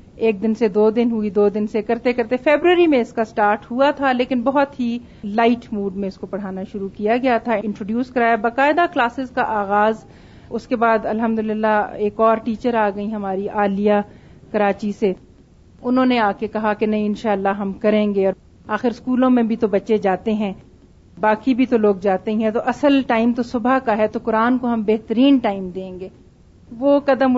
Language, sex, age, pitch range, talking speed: Urdu, female, 40-59, 210-250 Hz, 205 wpm